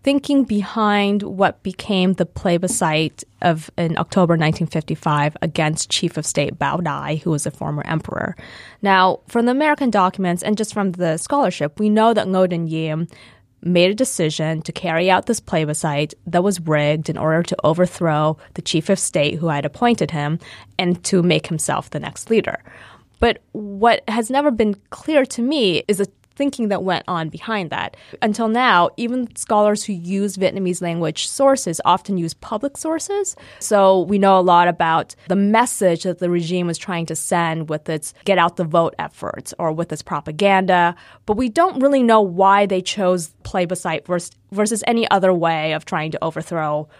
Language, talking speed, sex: English, 175 wpm, female